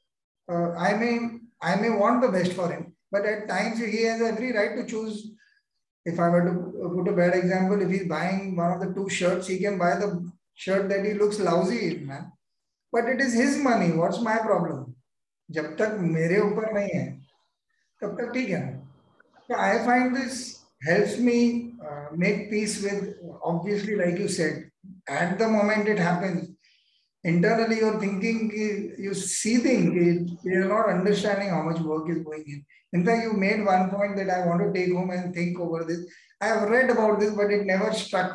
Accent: Indian